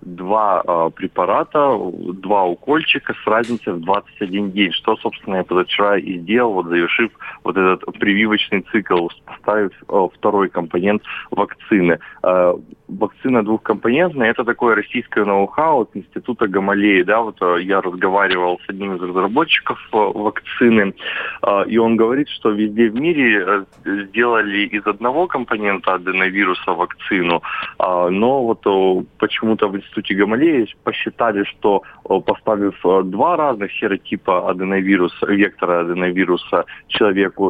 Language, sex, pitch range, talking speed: Russian, male, 95-110 Hz, 115 wpm